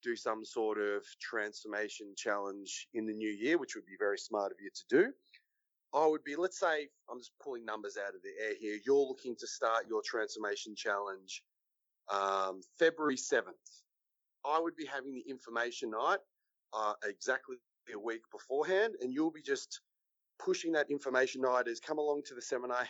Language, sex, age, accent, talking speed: English, male, 30-49, Australian, 180 wpm